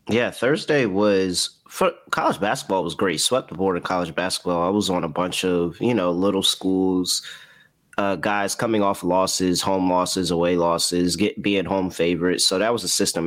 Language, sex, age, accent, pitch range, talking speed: English, male, 20-39, American, 85-105 Hz, 190 wpm